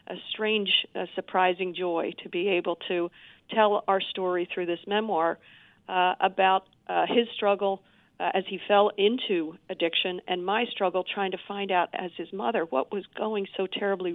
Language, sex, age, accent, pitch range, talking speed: English, female, 50-69, American, 175-210 Hz, 175 wpm